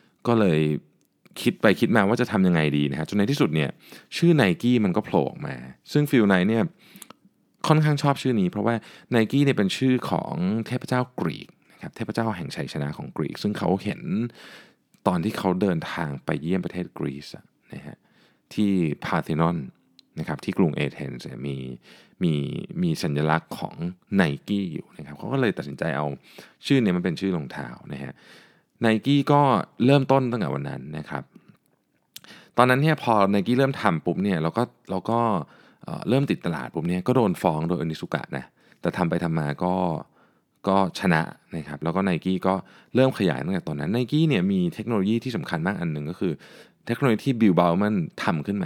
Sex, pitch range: male, 80-130 Hz